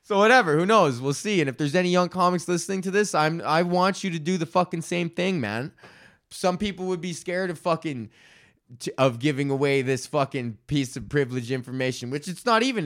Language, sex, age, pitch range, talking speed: English, male, 20-39, 130-185 Hz, 225 wpm